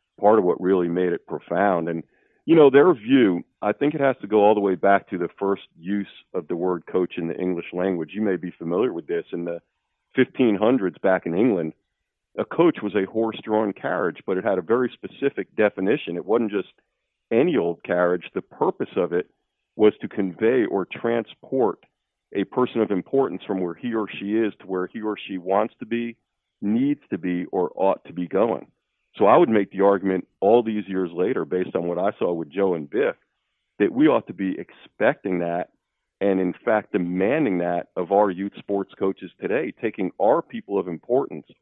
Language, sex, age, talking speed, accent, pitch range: English, male, 40-59, 205 wpm, American, 90-105 Hz